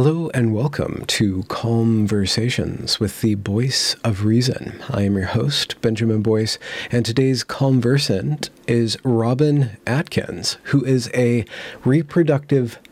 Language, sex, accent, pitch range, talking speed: English, male, American, 110-130 Hz, 120 wpm